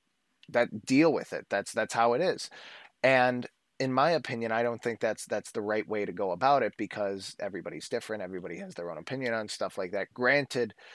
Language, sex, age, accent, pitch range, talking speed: English, male, 30-49, American, 105-125 Hz, 210 wpm